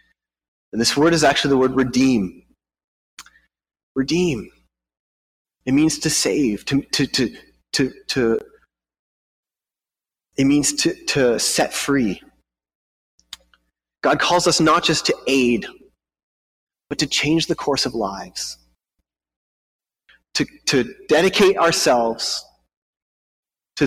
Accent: American